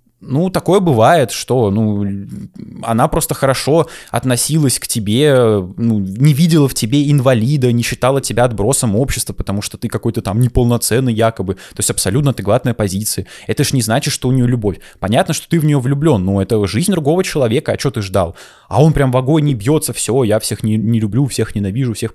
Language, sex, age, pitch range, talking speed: Russian, male, 20-39, 110-150 Hz, 200 wpm